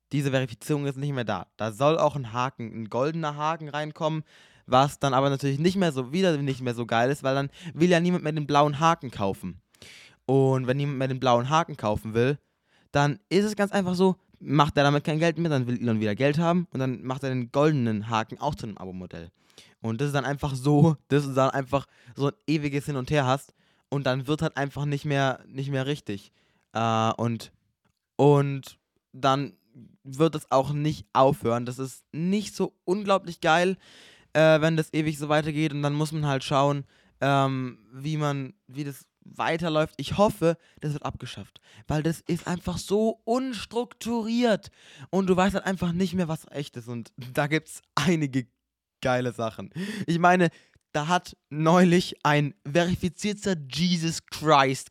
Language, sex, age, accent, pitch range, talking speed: German, male, 20-39, German, 130-165 Hz, 190 wpm